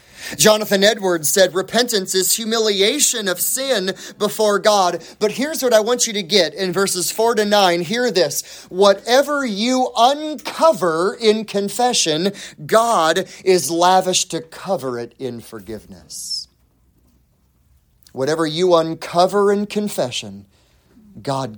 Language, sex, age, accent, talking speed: English, male, 30-49, American, 120 wpm